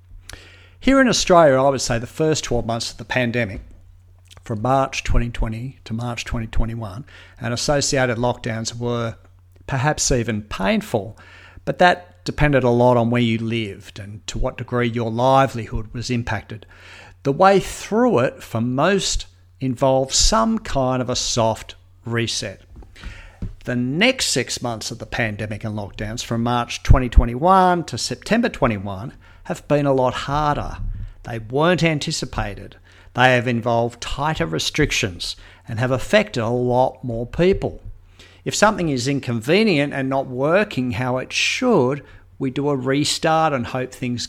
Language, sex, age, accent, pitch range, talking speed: English, male, 50-69, Australian, 110-140 Hz, 145 wpm